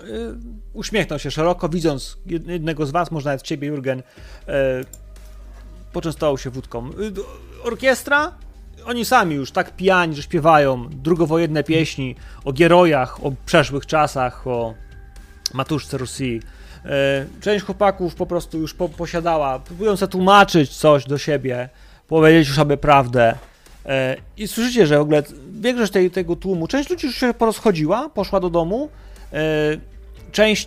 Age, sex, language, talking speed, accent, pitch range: 30-49, male, Polish, 130 wpm, native, 130-180 Hz